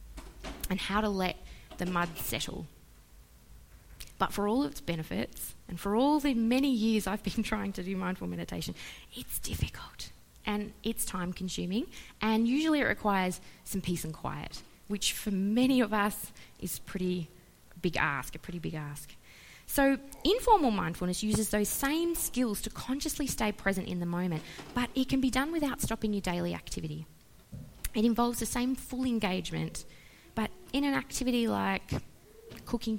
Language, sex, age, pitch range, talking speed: English, female, 20-39, 180-235 Hz, 160 wpm